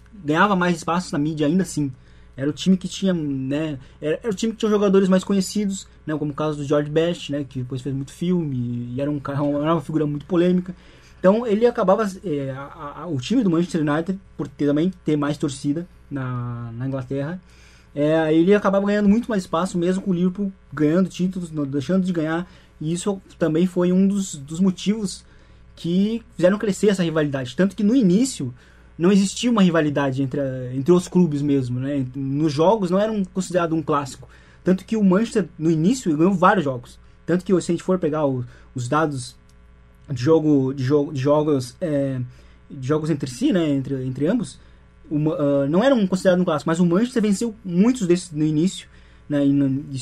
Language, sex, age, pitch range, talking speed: Portuguese, male, 20-39, 140-185 Hz, 205 wpm